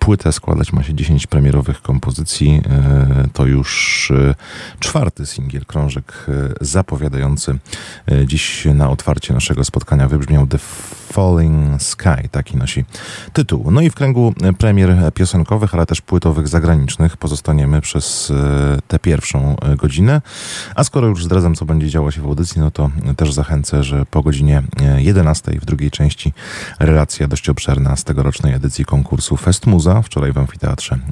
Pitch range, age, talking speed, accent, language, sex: 70-85 Hz, 30-49, 140 wpm, native, Polish, male